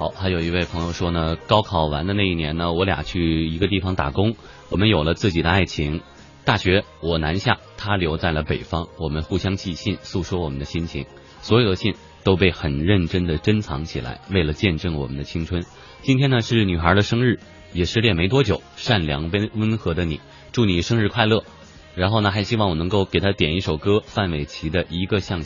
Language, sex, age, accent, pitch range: Chinese, male, 30-49, native, 85-110 Hz